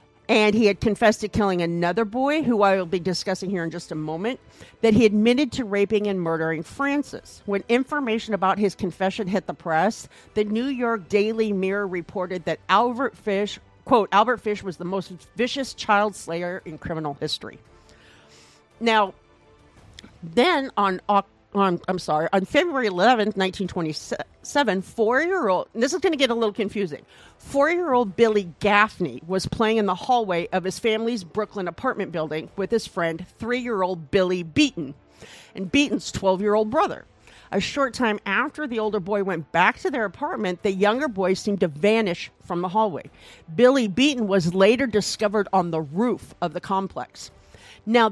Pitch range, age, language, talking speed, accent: 180-225 Hz, 50-69, English, 165 wpm, American